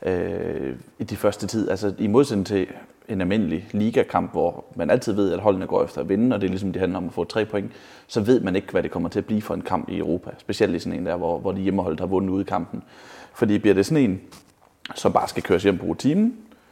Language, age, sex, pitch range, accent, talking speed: Danish, 30-49, male, 95-125 Hz, native, 260 wpm